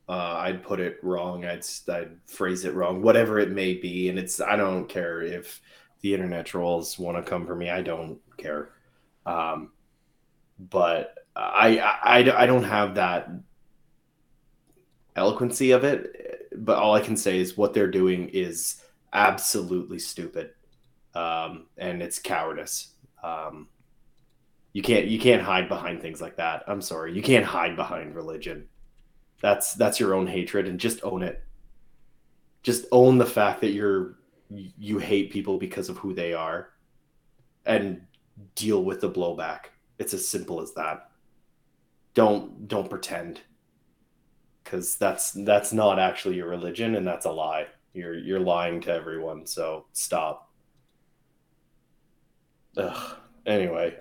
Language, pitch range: English, 90-110 Hz